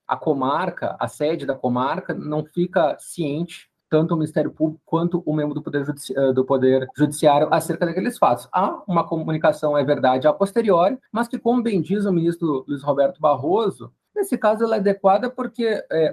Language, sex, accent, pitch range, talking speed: Portuguese, male, Brazilian, 140-195 Hz, 180 wpm